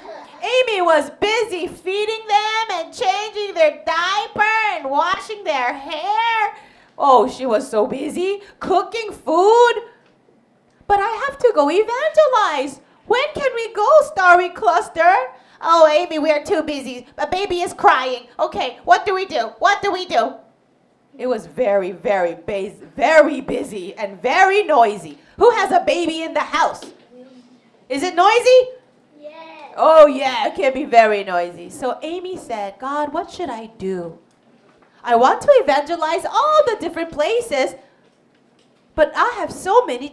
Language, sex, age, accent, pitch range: Korean, female, 30-49, American, 250-390 Hz